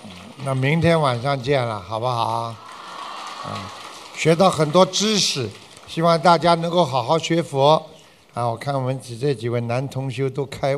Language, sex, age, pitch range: Chinese, male, 60-79, 110-145 Hz